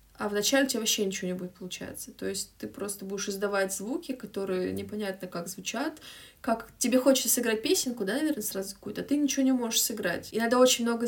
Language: Russian